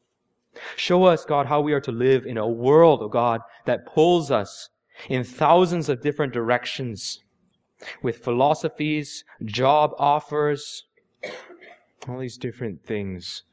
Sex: male